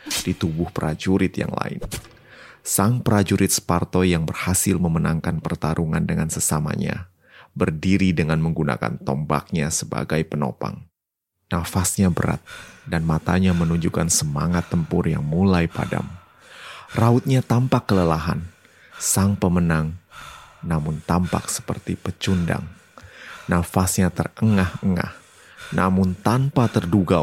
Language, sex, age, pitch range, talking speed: Indonesian, male, 30-49, 80-100 Hz, 95 wpm